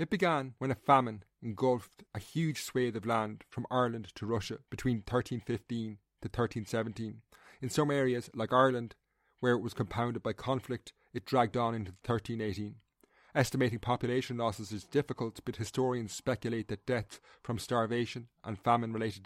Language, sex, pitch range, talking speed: English, male, 110-125 Hz, 155 wpm